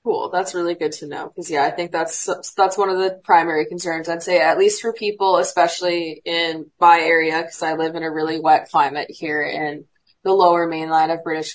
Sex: female